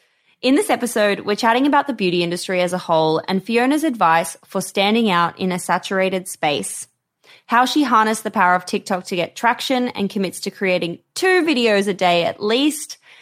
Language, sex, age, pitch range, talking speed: English, female, 20-39, 185-260 Hz, 190 wpm